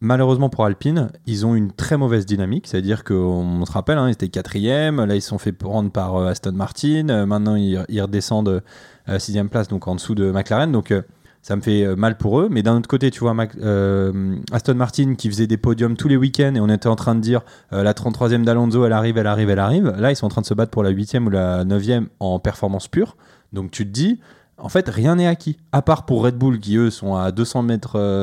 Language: French